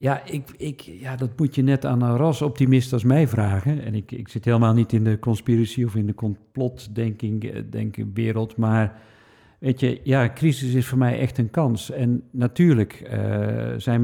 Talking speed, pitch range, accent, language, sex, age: 170 wpm, 110-130 Hz, Dutch, Dutch, male, 50-69